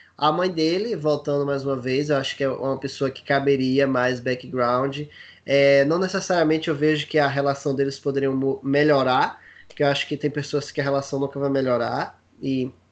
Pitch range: 140-185 Hz